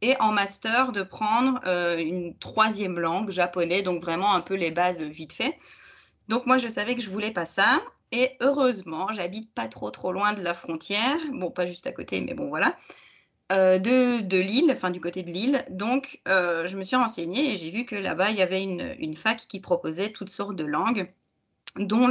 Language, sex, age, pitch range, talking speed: French, female, 20-39, 180-240 Hz, 210 wpm